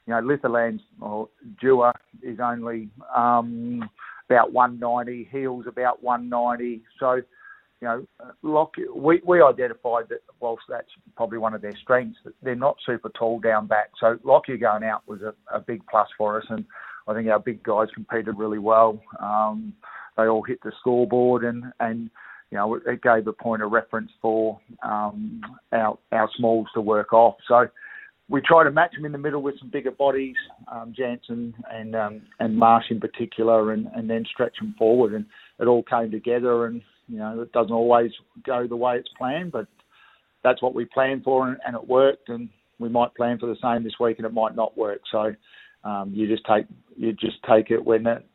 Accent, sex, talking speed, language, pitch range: Australian, male, 195 wpm, English, 110-125 Hz